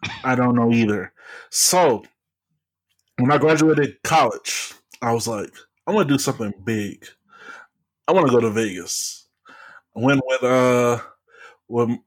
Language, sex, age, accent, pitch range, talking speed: English, male, 20-39, American, 115-150 Hz, 145 wpm